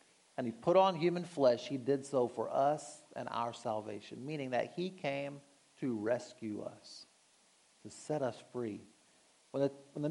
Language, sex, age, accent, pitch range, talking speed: English, male, 50-69, American, 125-155 Hz, 165 wpm